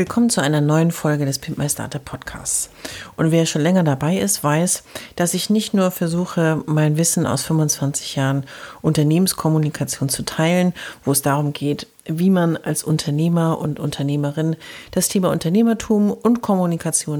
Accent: German